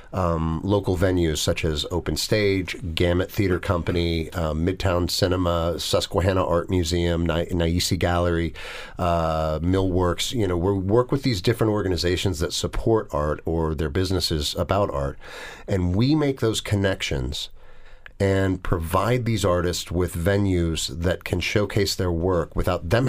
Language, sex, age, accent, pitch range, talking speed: English, male, 40-59, American, 85-100 Hz, 145 wpm